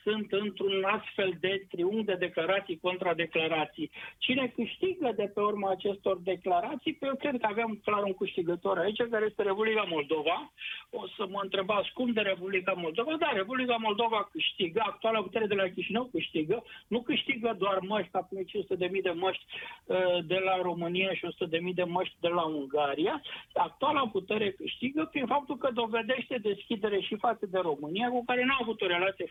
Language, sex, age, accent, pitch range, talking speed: Romanian, male, 60-79, native, 180-230 Hz, 175 wpm